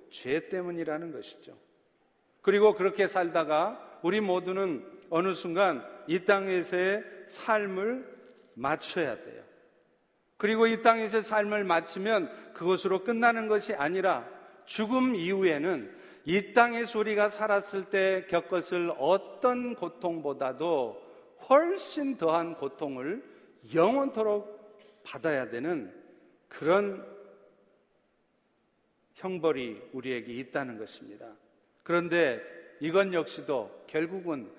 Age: 50-69